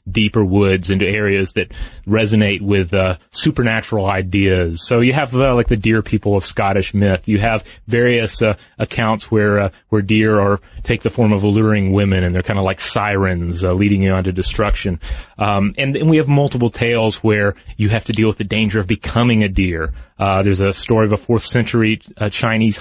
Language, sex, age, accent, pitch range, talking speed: English, male, 30-49, American, 100-115 Hz, 205 wpm